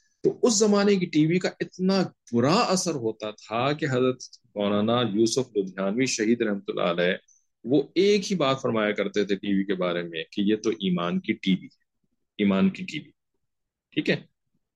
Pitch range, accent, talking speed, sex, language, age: 105-150 Hz, Indian, 185 wpm, male, English, 40-59